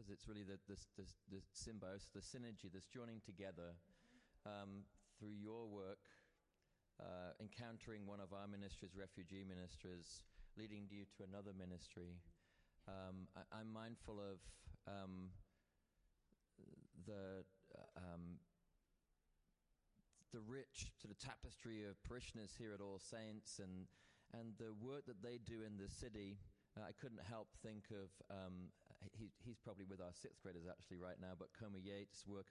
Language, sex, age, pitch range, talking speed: English, male, 30-49, 95-110 Hz, 150 wpm